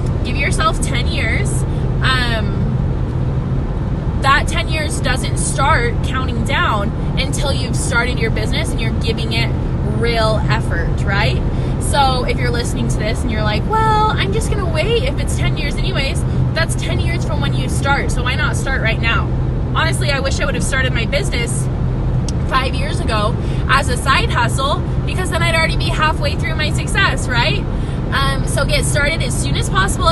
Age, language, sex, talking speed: 20-39, English, female, 185 wpm